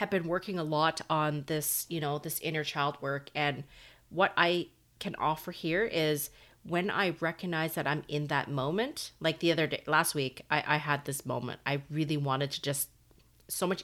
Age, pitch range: 30-49, 145-180 Hz